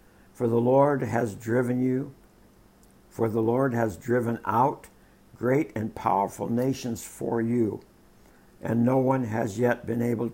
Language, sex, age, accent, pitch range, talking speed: English, male, 60-79, American, 110-130 Hz, 145 wpm